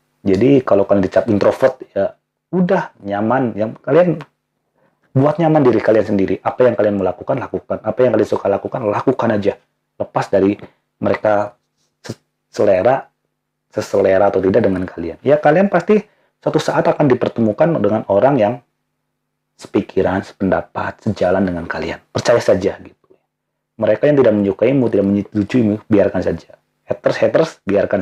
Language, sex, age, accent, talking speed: Indonesian, male, 30-49, native, 135 wpm